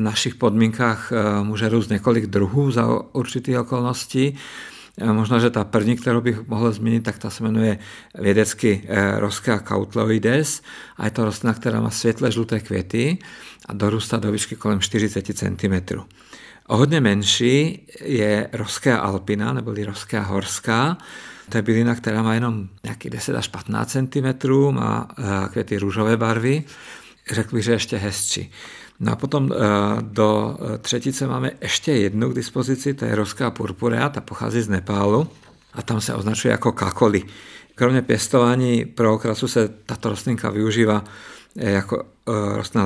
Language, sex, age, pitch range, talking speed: Czech, male, 50-69, 105-120 Hz, 145 wpm